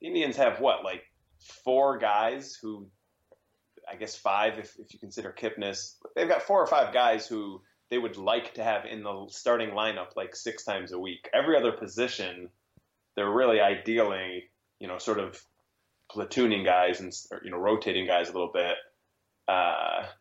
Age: 20-39